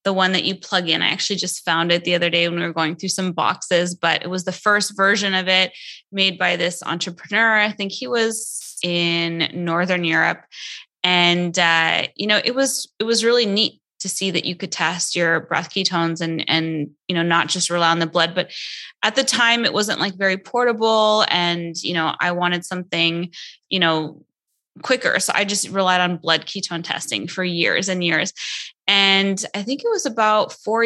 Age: 20-39